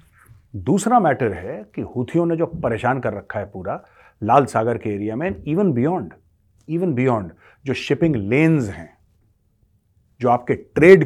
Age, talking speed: 40-59, 150 wpm